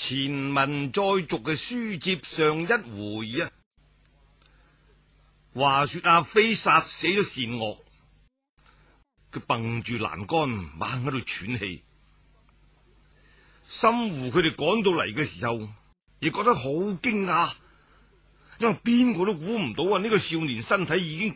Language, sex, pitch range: Chinese, male, 125-195 Hz